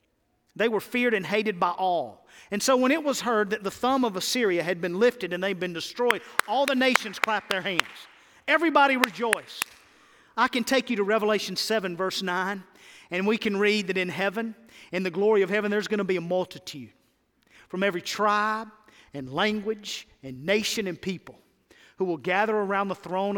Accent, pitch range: American, 180-215 Hz